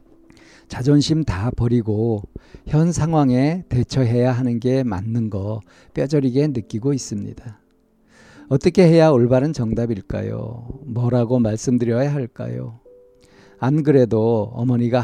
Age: 50-69